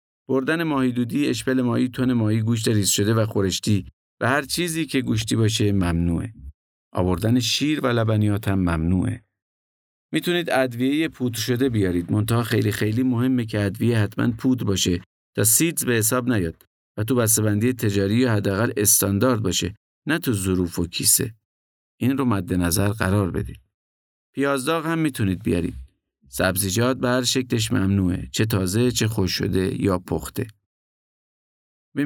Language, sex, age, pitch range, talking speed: Persian, male, 50-69, 95-130 Hz, 150 wpm